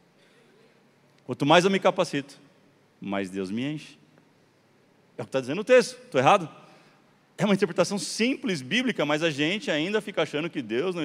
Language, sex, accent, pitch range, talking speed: Portuguese, male, Brazilian, 115-175 Hz, 175 wpm